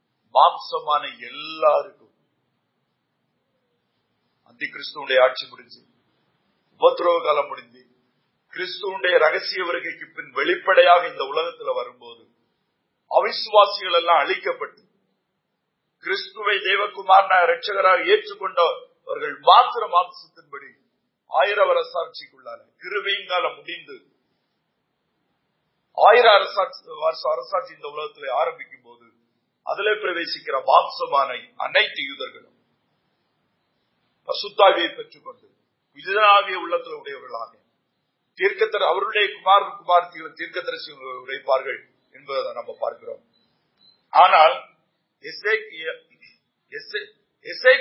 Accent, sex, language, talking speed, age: native, male, Tamil, 50 wpm, 40-59